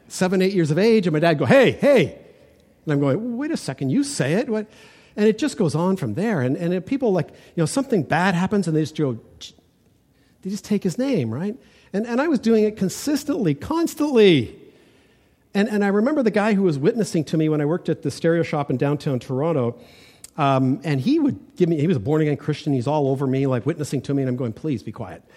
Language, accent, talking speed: English, American, 240 wpm